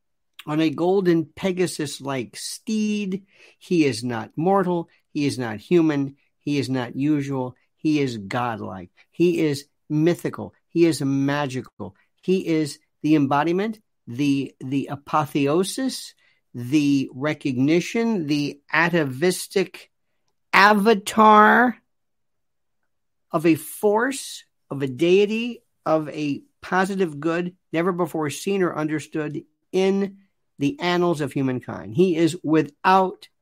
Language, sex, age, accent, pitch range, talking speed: English, male, 50-69, American, 145-210 Hz, 110 wpm